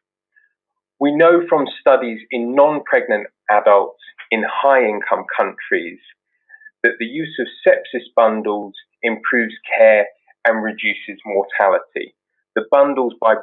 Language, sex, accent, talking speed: English, male, British, 105 wpm